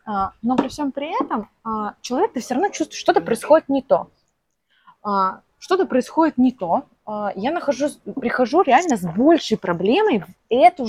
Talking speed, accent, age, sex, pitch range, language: 150 wpm, native, 20-39, female, 205-275 Hz, Russian